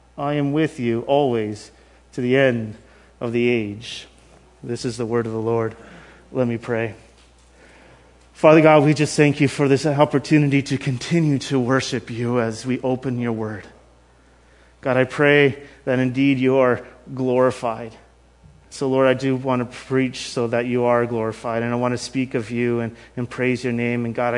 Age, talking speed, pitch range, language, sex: 30-49, 180 wpm, 115-145 Hz, English, male